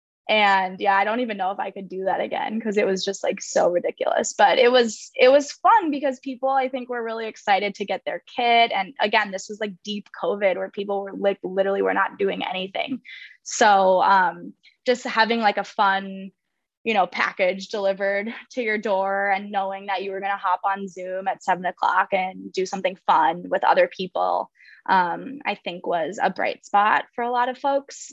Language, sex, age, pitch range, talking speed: English, female, 10-29, 195-235 Hz, 205 wpm